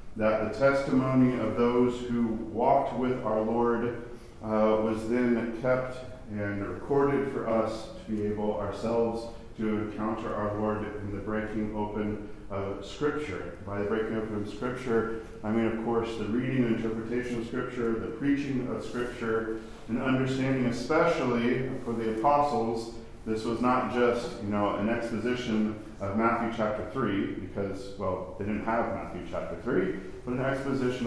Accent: American